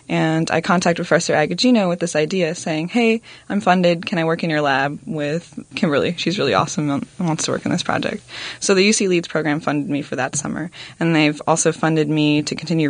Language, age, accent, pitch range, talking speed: English, 20-39, American, 150-175 Hz, 220 wpm